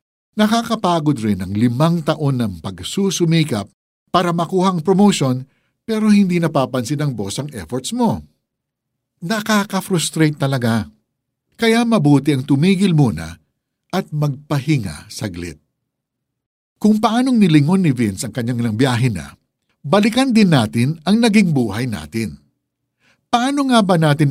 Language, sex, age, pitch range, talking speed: Filipino, male, 60-79, 115-170 Hz, 120 wpm